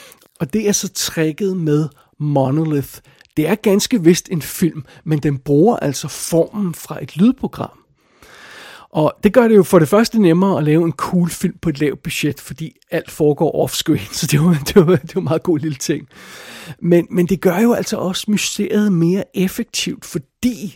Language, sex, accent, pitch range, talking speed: Danish, male, native, 150-185 Hz, 185 wpm